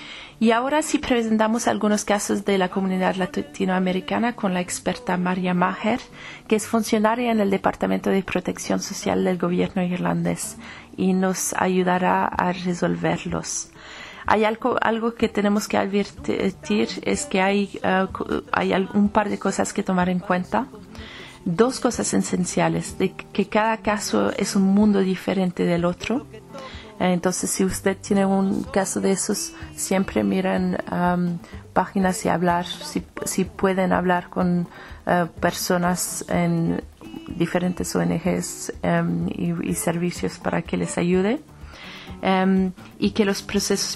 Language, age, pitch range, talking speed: Spanish, 40-59, 170-200 Hz, 135 wpm